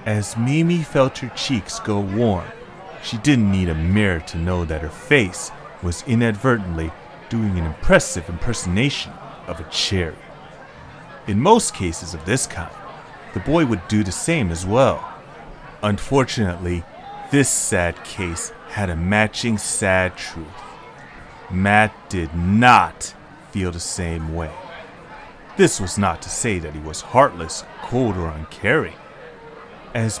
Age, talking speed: 30-49, 135 wpm